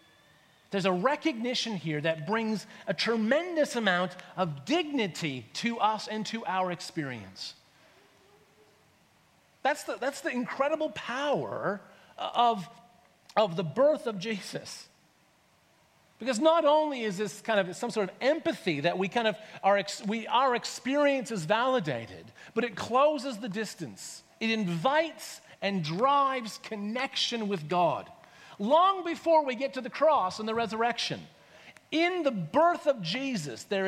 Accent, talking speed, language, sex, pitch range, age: American, 135 wpm, English, male, 175-270 Hz, 40-59